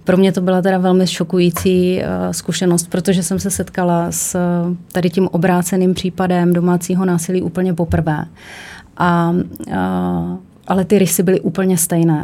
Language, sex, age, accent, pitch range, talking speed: Czech, female, 30-49, native, 160-185 Hz, 130 wpm